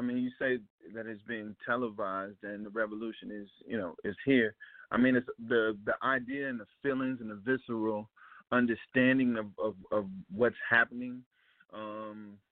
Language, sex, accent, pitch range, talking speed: English, male, American, 105-125 Hz, 170 wpm